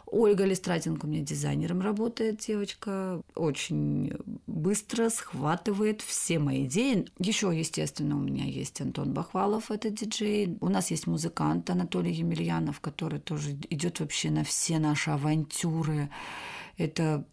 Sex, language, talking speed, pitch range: female, Russian, 130 wpm, 140-185 Hz